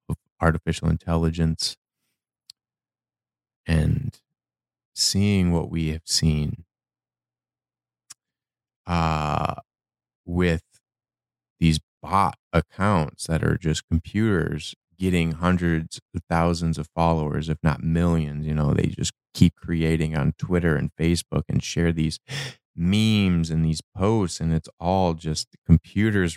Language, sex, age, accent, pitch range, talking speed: English, male, 20-39, American, 80-95 Hz, 110 wpm